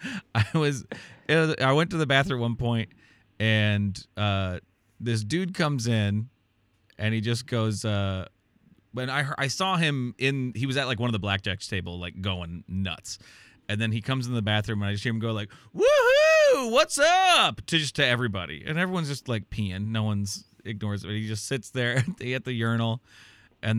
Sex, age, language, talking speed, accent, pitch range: male, 30-49, English, 195 wpm, American, 105-135 Hz